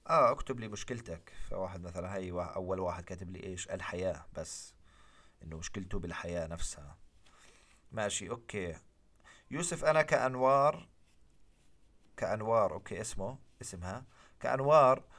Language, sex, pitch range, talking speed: English, male, 95-120 Hz, 115 wpm